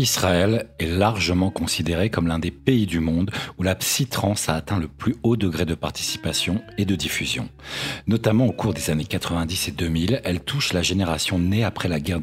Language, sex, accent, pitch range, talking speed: French, male, French, 85-115 Hz, 195 wpm